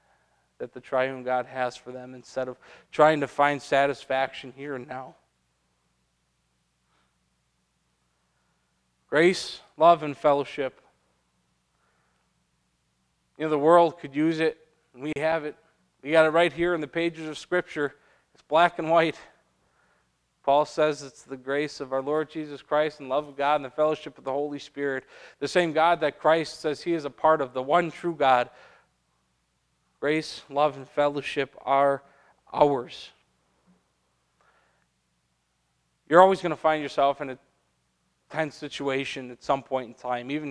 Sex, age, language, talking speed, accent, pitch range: male, 40-59, English, 155 wpm, American, 125-155 Hz